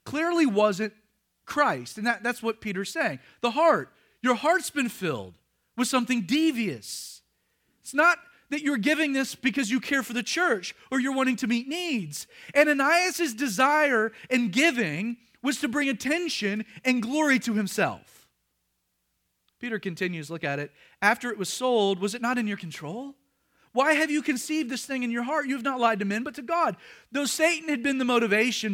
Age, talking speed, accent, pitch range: 40-59, 180 wpm, American, 210-310 Hz